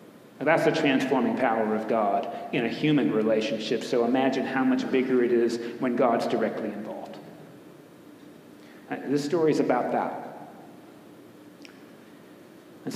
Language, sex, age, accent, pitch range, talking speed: English, male, 40-59, American, 130-165 Hz, 125 wpm